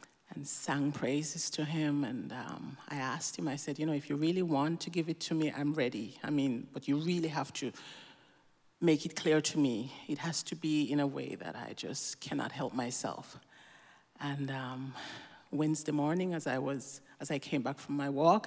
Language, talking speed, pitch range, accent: English, 210 wpm, 140-170 Hz, Nigerian